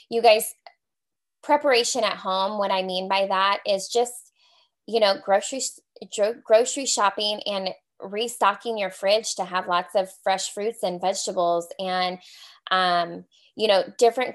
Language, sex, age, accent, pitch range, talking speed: English, female, 20-39, American, 190-225 Hz, 140 wpm